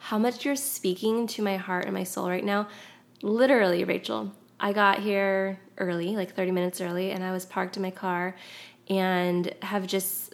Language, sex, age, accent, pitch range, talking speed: English, female, 20-39, American, 180-210 Hz, 185 wpm